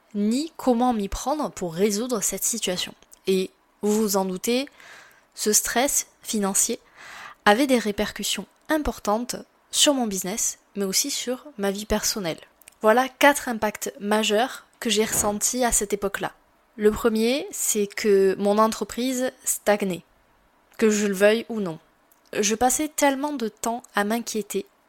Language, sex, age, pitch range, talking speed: French, female, 20-39, 205-250 Hz, 140 wpm